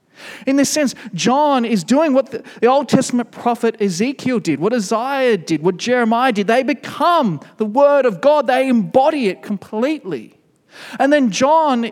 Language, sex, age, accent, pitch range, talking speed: English, male, 40-59, Australian, 190-255 Hz, 160 wpm